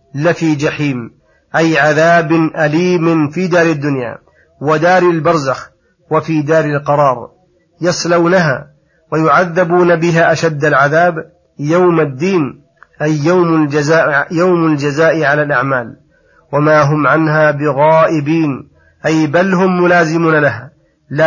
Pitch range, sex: 150-165 Hz, male